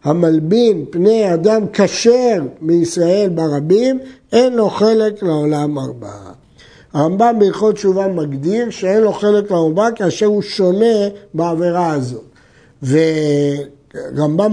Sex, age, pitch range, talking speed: male, 60-79, 165-225 Hz, 105 wpm